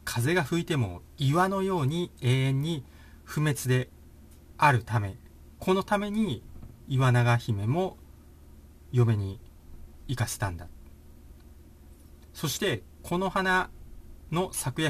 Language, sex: Japanese, male